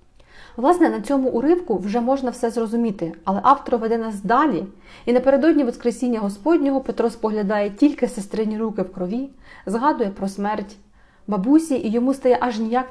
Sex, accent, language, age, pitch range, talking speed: female, native, Ukrainian, 30-49, 195-240 Hz, 155 wpm